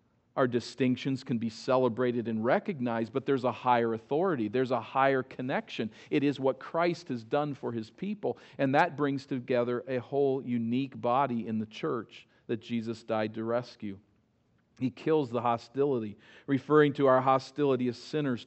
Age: 50-69